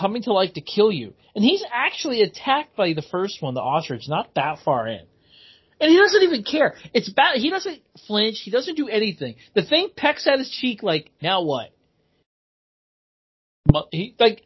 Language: English